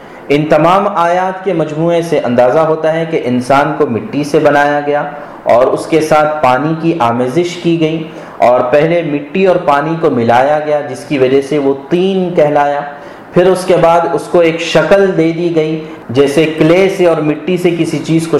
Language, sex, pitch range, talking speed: Urdu, male, 130-165 Hz, 195 wpm